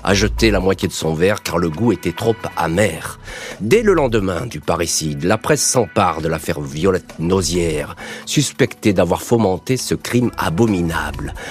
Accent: French